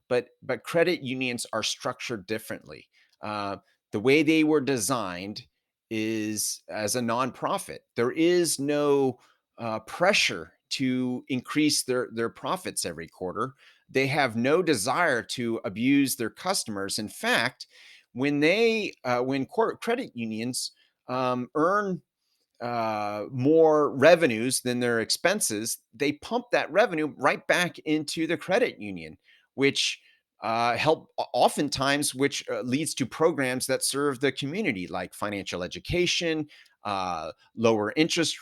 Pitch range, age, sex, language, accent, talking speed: 115-155 Hz, 30-49, male, English, American, 130 wpm